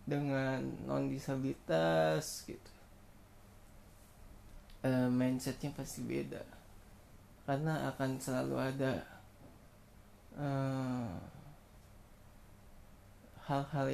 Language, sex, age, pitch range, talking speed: Indonesian, male, 20-39, 100-140 Hz, 55 wpm